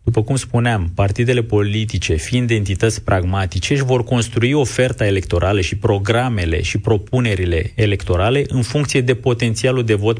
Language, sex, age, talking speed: Romanian, male, 30-49, 140 wpm